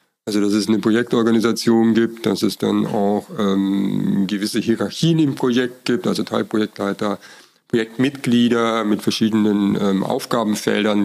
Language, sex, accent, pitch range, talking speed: German, male, German, 105-115 Hz, 125 wpm